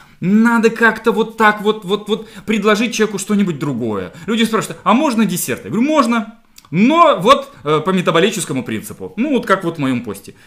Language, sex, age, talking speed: Russian, male, 20-39, 185 wpm